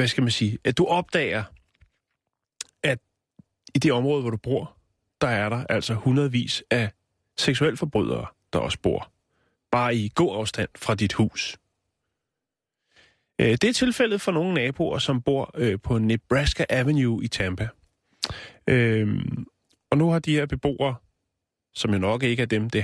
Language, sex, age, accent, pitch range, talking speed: Danish, male, 30-49, native, 105-135 Hz, 150 wpm